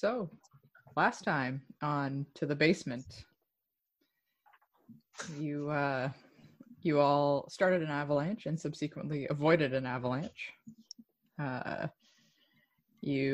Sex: female